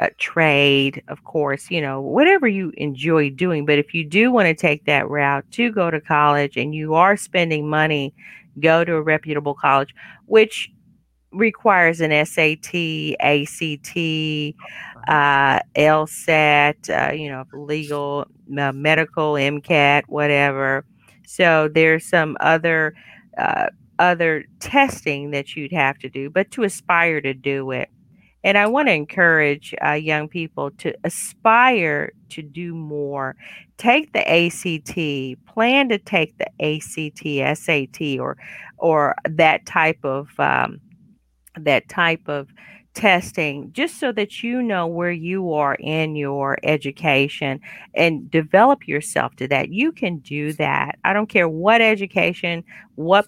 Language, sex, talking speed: English, female, 135 wpm